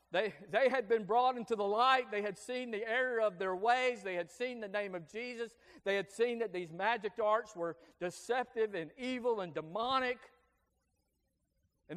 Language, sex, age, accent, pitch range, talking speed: English, male, 50-69, American, 175-245 Hz, 185 wpm